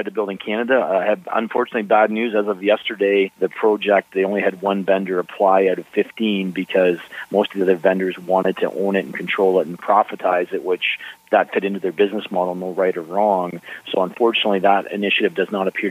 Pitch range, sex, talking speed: 90-105 Hz, male, 210 wpm